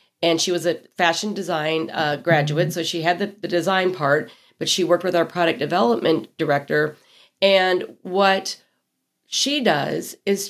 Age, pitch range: 40-59, 170-205 Hz